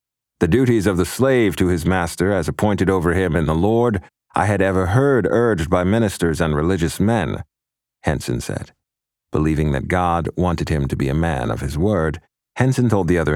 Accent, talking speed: American, 195 wpm